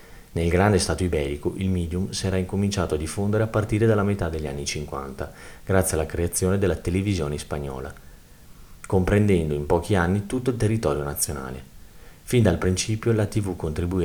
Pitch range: 80-100 Hz